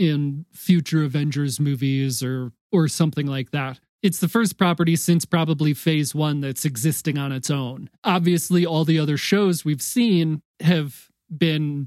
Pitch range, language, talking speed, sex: 145-175 Hz, English, 155 wpm, male